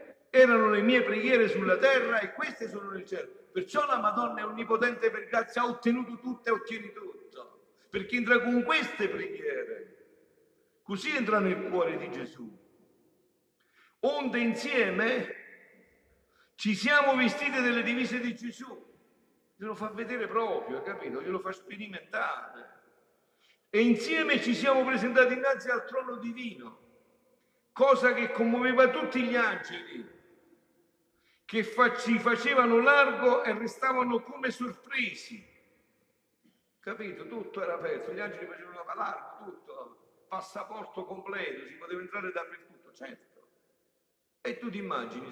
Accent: native